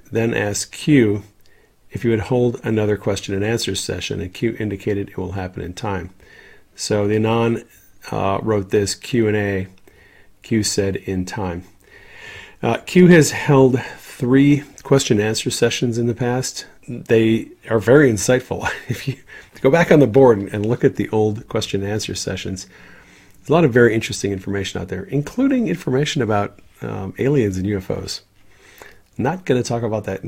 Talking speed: 170 wpm